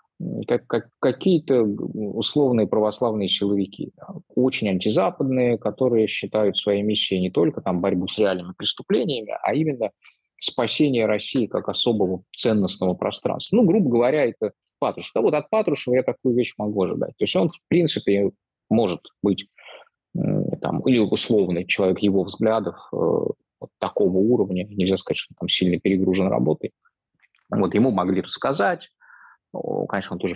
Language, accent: Russian, native